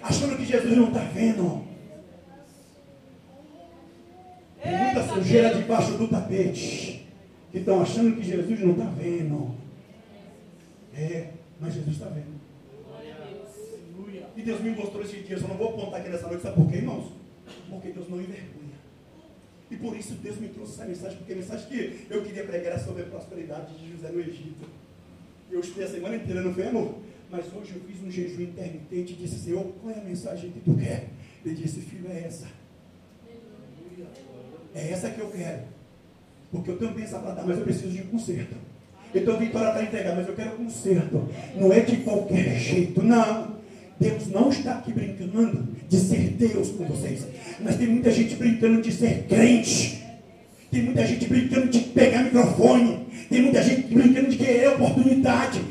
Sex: male